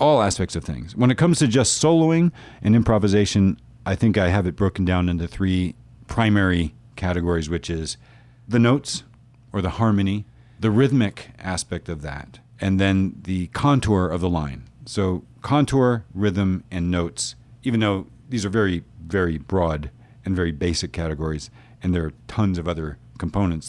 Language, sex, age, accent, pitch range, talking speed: English, male, 40-59, American, 90-120 Hz, 165 wpm